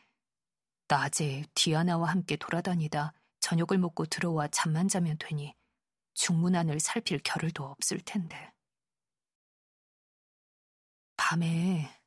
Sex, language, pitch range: female, Korean, 155-195 Hz